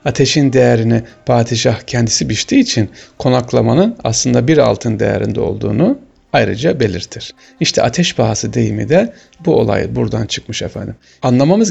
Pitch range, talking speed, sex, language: 110-150 Hz, 130 wpm, male, Turkish